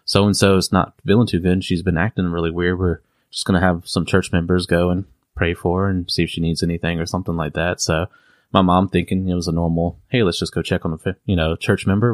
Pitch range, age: 90-105 Hz, 20-39